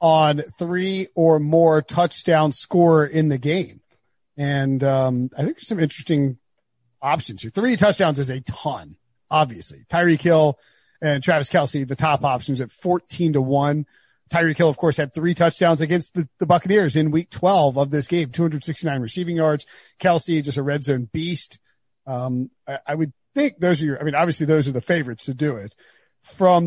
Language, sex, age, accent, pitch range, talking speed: English, male, 40-59, American, 140-175 Hz, 185 wpm